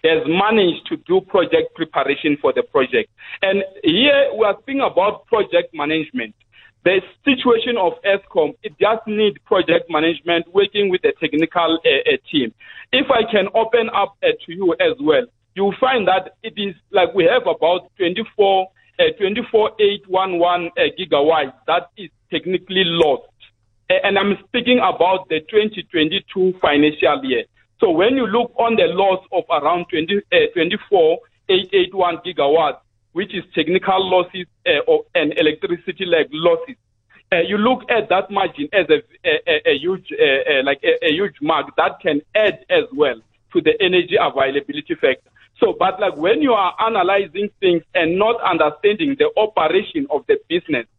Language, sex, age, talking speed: English, male, 50-69, 160 wpm